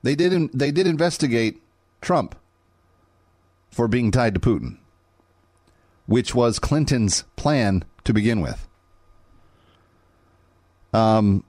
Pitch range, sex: 85-110 Hz, male